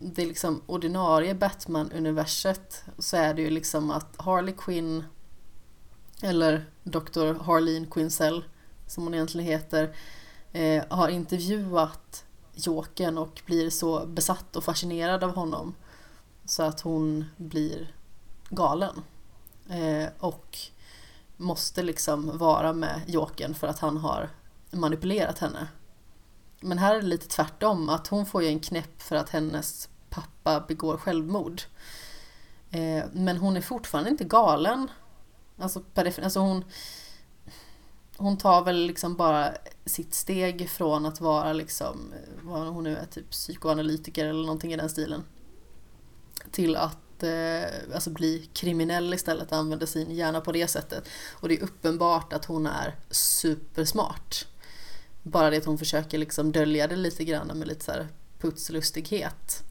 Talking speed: 140 wpm